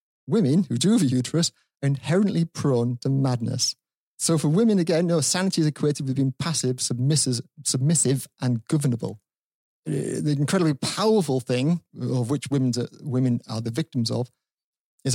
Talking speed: 145 wpm